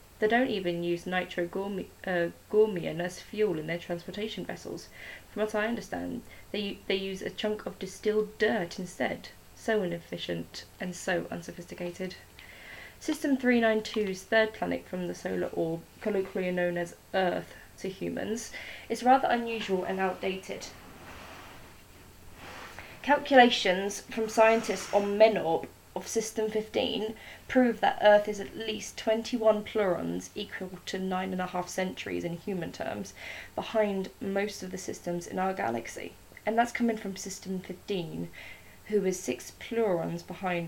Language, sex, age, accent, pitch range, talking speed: English, female, 20-39, British, 170-215 Hz, 140 wpm